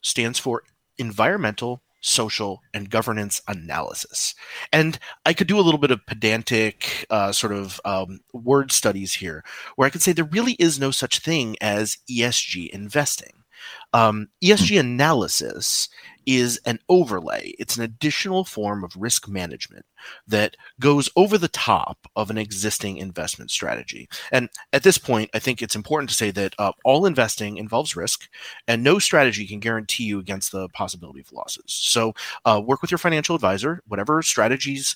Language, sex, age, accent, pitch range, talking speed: English, male, 30-49, American, 105-140 Hz, 165 wpm